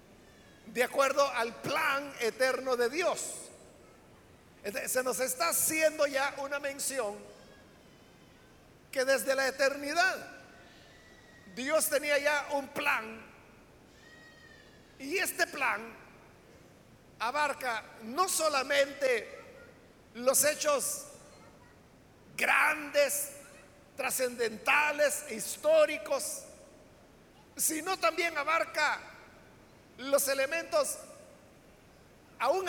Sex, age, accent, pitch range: male, 50-69, Mexican, 260-300 Hz